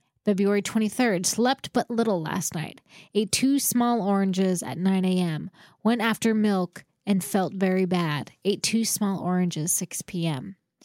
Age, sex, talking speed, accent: 10-29, female, 150 wpm, American